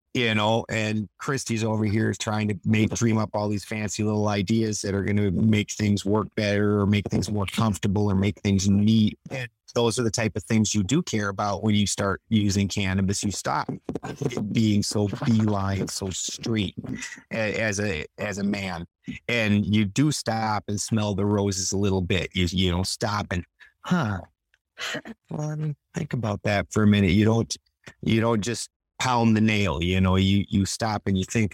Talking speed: 200 wpm